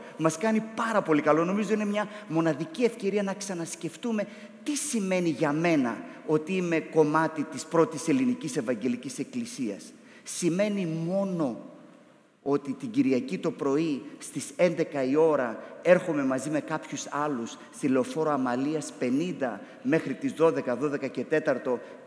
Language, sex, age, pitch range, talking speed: Greek, male, 30-49, 150-230 Hz, 135 wpm